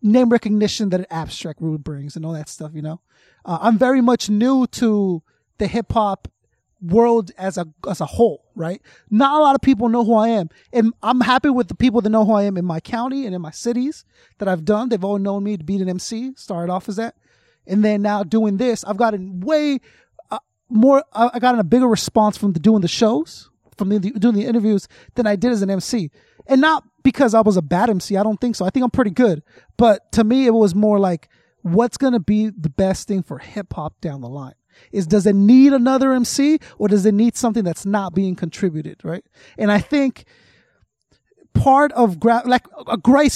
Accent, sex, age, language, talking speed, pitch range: American, male, 20-39, English, 225 wpm, 190-245 Hz